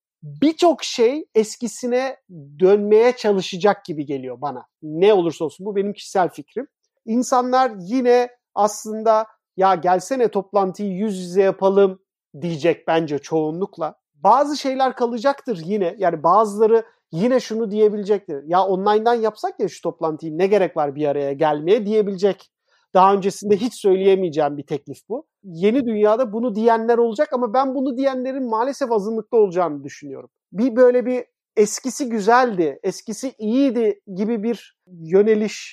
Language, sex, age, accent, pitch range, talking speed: Turkish, male, 40-59, native, 180-230 Hz, 135 wpm